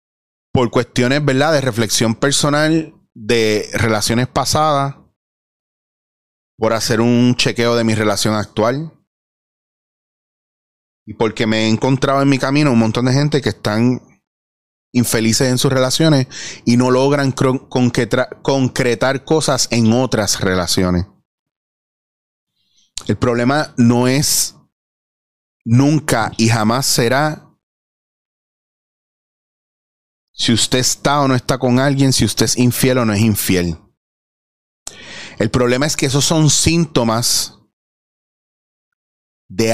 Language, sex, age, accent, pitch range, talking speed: Spanish, male, 30-49, Venezuelan, 110-135 Hz, 115 wpm